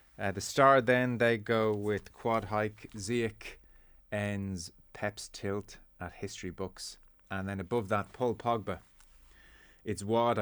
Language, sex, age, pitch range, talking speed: English, male, 30-49, 90-110 Hz, 140 wpm